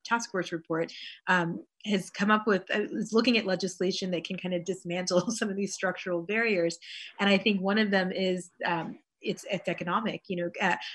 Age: 30-49